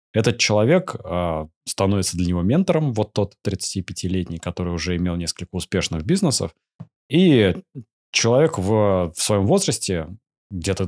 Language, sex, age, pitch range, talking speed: Russian, male, 20-39, 90-115 Hz, 125 wpm